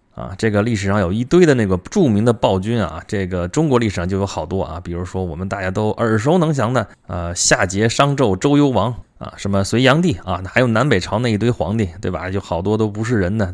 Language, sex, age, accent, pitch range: Chinese, male, 20-39, native, 95-125 Hz